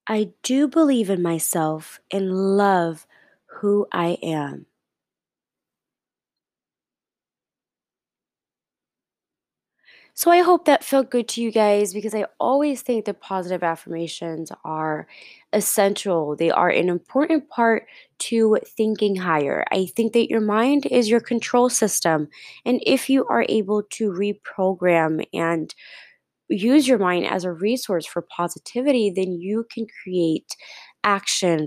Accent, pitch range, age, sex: American, 180-250 Hz, 20-39, female